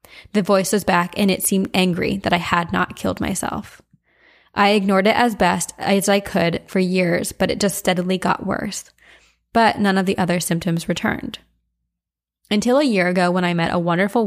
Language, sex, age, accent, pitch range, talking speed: English, female, 20-39, American, 175-205 Hz, 195 wpm